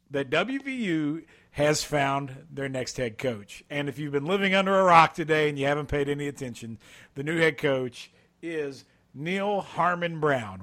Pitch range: 140-190 Hz